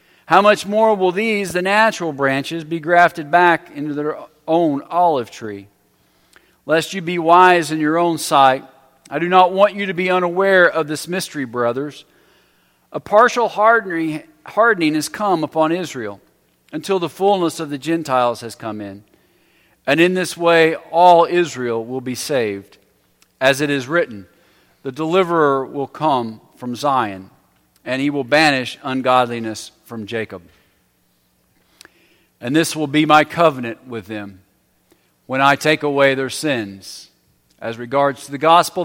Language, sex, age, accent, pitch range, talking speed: English, male, 40-59, American, 115-165 Hz, 150 wpm